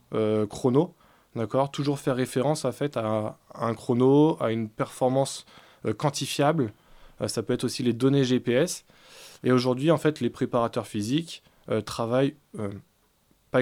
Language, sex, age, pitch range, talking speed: French, male, 20-39, 125-155 Hz, 165 wpm